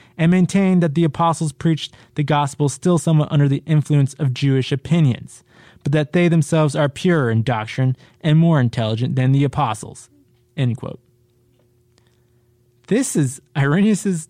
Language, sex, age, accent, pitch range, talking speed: English, male, 20-39, American, 120-160 Hz, 140 wpm